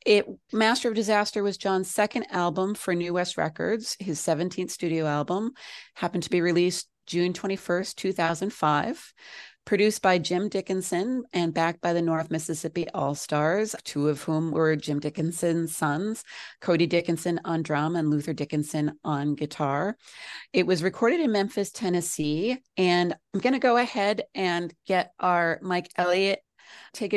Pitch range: 160-195 Hz